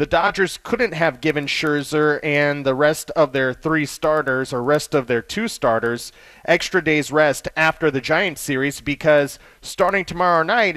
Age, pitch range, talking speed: 30-49, 140-175 Hz, 165 wpm